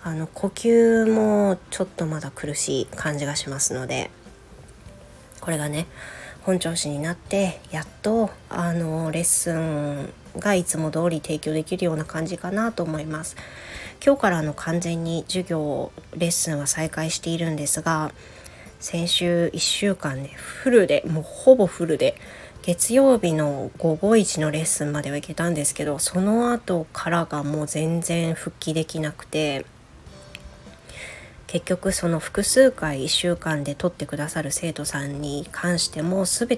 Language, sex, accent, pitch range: Japanese, female, native, 155-185 Hz